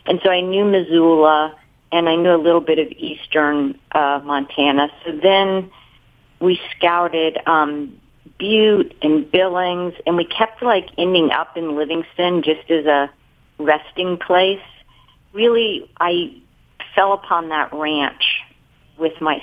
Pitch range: 145-175 Hz